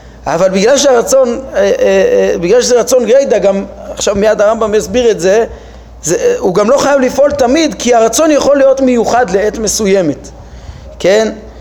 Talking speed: 150 wpm